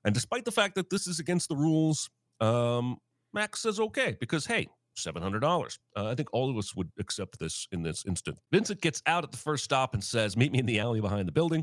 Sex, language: male, English